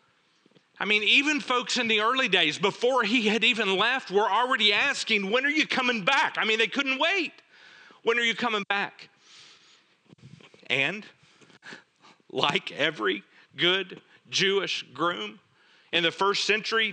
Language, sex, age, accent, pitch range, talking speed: English, male, 40-59, American, 170-225 Hz, 145 wpm